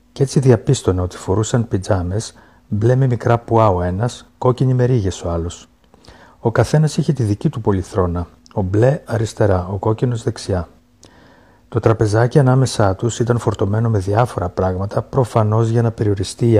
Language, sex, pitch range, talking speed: Greek, male, 95-120 Hz, 165 wpm